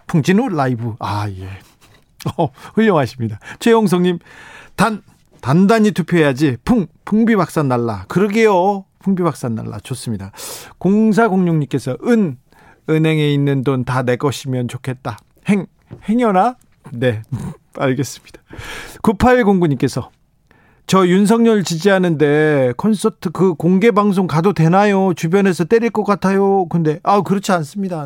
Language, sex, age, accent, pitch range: Korean, male, 40-59, native, 130-195 Hz